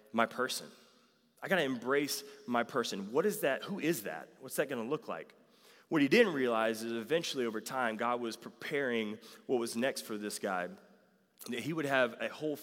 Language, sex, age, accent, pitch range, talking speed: English, male, 30-49, American, 115-155 Hz, 195 wpm